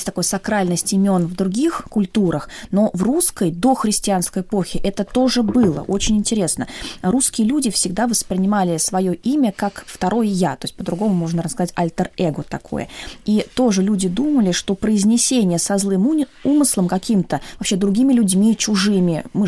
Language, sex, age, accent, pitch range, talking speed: Russian, female, 20-39, native, 180-230 Hz, 150 wpm